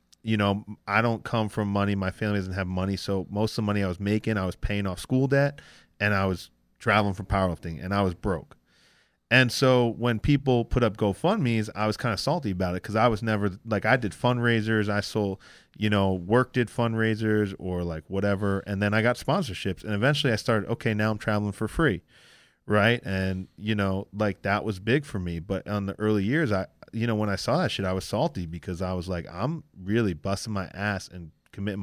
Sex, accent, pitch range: male, American, 95-115 Hz